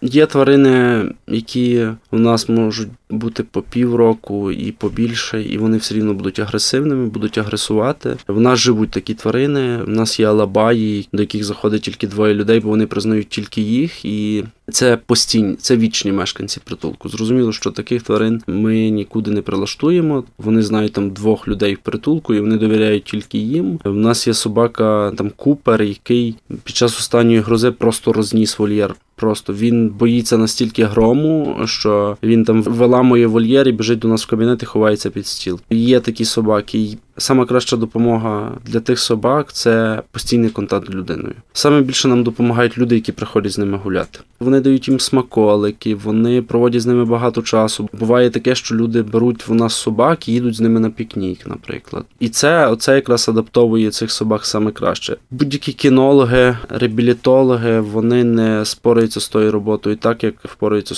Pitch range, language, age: 105-120 Hz, Ukrainian, 20-39